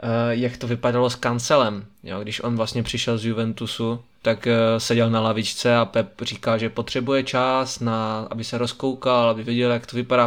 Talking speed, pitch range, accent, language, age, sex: 180 wpm, 115-125 Hz, native, Czech, 20-39, male